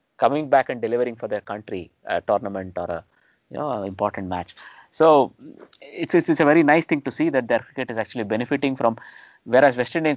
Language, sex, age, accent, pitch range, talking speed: English, male, 20-39, Indian, 105-140 Hz, 210 wpm